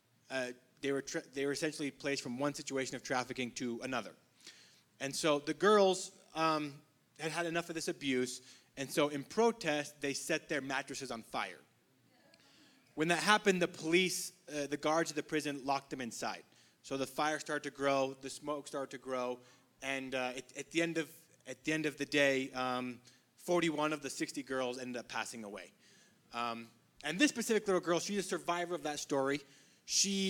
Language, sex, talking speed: English, male, 190 wpm